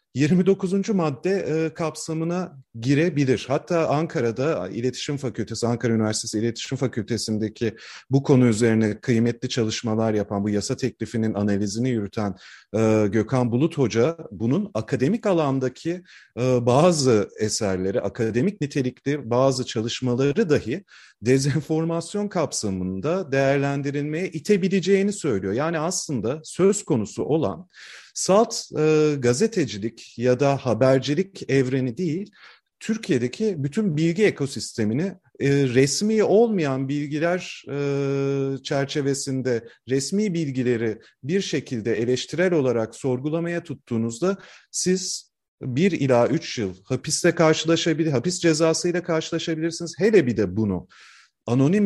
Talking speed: 105 wpm